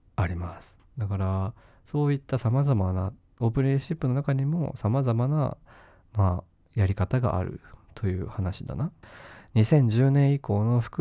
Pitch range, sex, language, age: 95-130 Hz, male, Japanese, 20-39